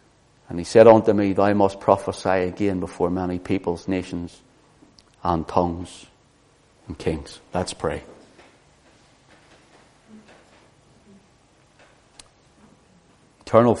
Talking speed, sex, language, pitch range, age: 85 wpm, male, English, 90-105 Hz, 60-79